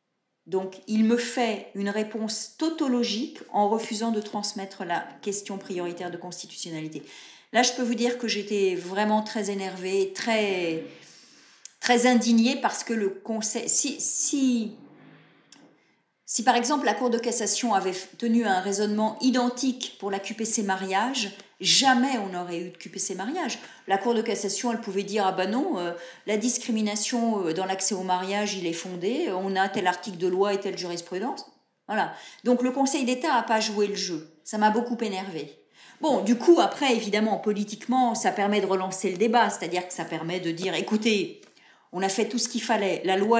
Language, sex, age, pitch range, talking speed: French, female, 40-59, 185-235 Hz, 180 wpm